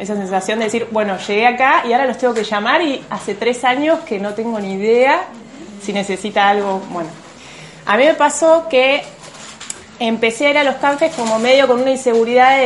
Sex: female